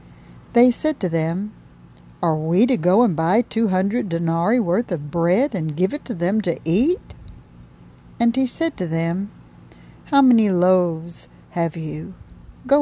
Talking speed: 160 wpm